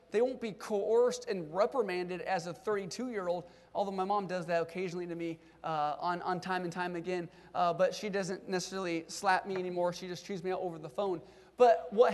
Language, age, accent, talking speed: English, 30-49, American, 210 wpm